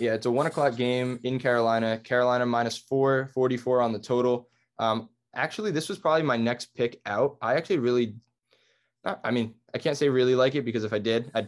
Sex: male